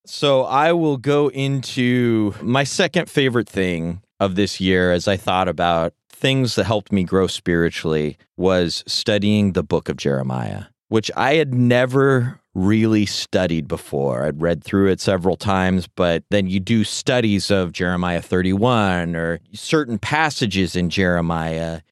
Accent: American